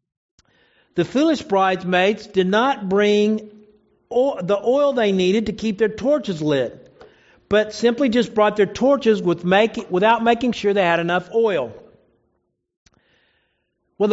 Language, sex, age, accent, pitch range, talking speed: English, male, 50-69, American, 185-230 Hz, 125 wpm